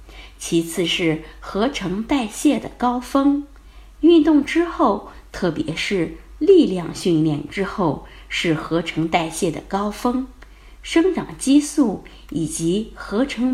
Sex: female